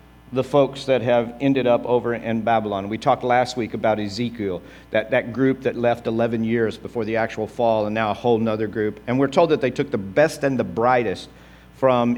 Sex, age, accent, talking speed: male, 50-69, American, 215 wpm